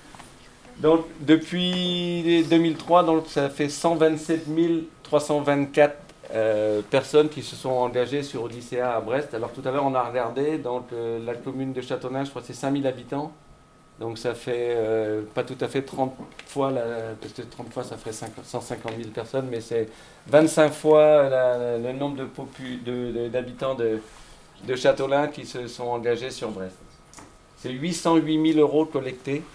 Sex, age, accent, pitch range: male, 40-59, French, 115-140 Hz